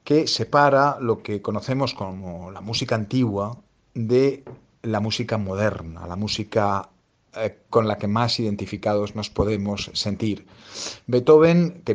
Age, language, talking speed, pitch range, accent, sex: 40-59, Spanish, 125 wpm, 110-140 Hz, Spanish, male